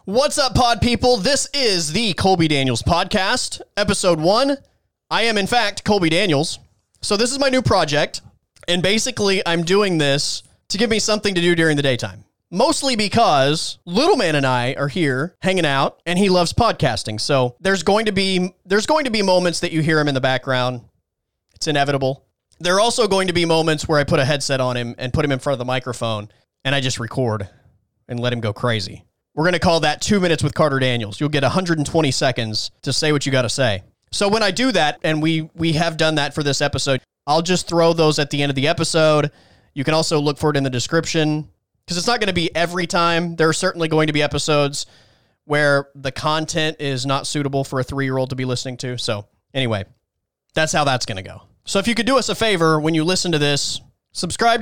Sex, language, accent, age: male, English, American, 30-49